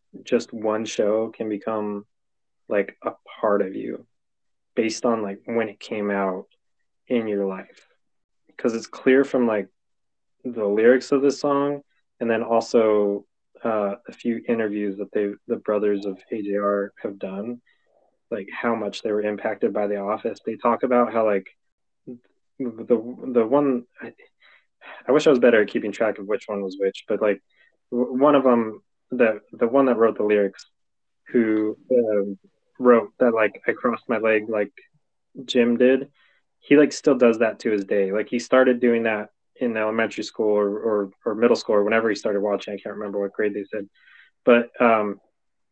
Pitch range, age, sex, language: 105-120 Hz, 20-39, male, English